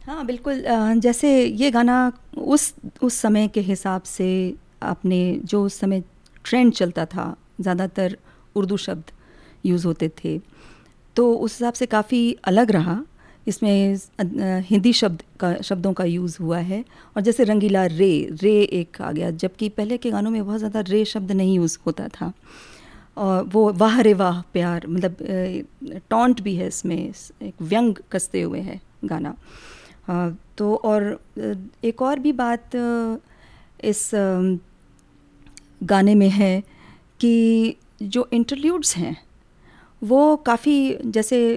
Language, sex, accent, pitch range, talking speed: Hindi, female, native, 185-240 Hz, 135 wpm